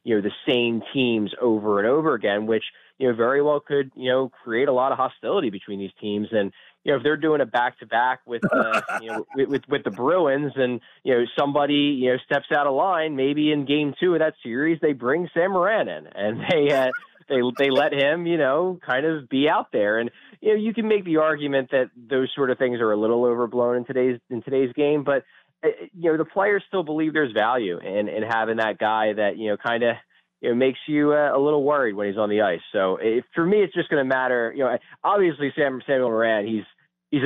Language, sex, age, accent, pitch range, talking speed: English, male, 20-39, American, 115-145 Hz, 240 wpm